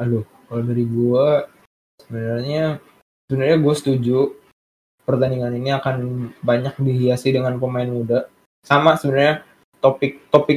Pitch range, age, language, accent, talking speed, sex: 130-155 Hz, 20-39, Indonesian, native, 115 wpm, male